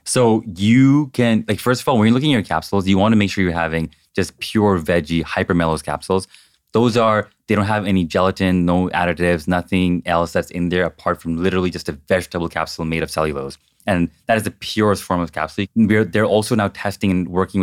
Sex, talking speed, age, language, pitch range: male, 220 wpm, 20-39, English, 85-105 Hz